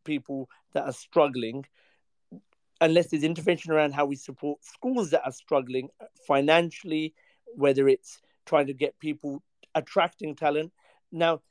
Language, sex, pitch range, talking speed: English, male, 140-170 Hz, 130 wpm